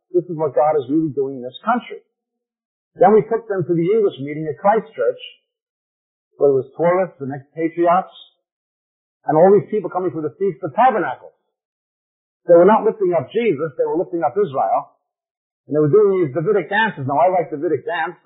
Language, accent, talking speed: English, American, 200 wpm